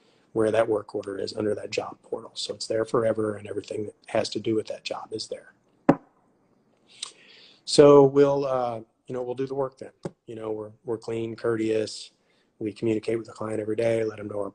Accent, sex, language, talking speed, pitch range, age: American, male, English, 210 wpm, 110-120 Hz, 30-49